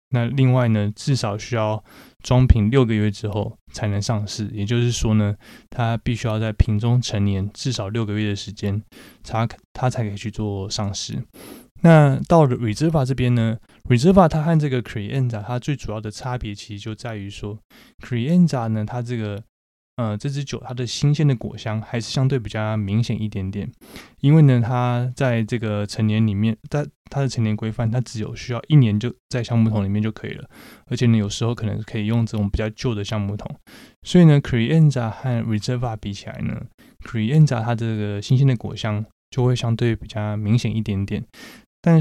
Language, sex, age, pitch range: Chinese, male, 20-39, 105-125 Hz